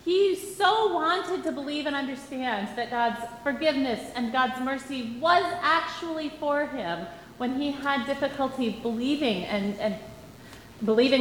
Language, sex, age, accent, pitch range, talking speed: English, female, 30-49, American, 240-325 Hz, 120 wpm